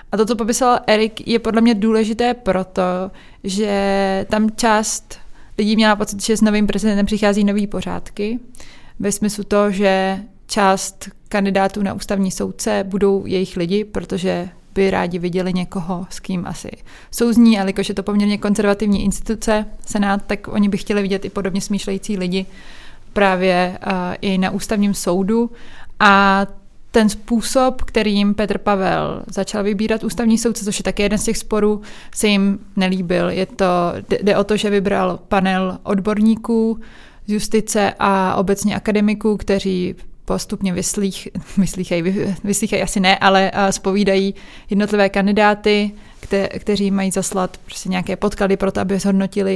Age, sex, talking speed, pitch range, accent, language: 20-39, female, 145 wpm, 195-210 Hz, native, Czech